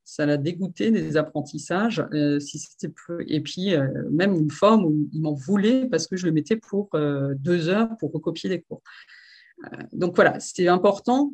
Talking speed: 195 wpm